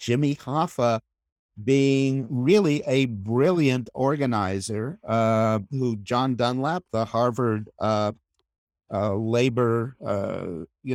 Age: 50-69